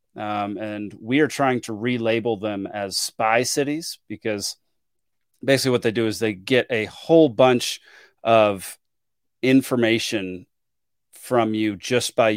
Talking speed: 135 wpm